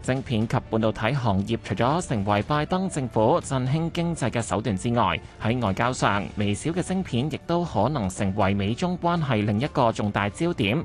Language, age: Chinese, 20-39